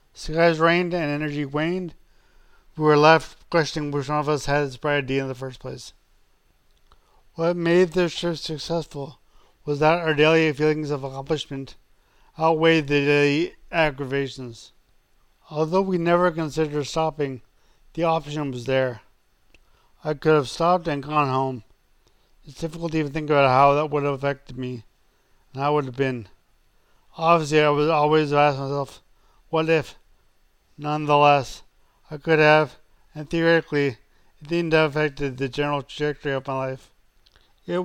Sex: male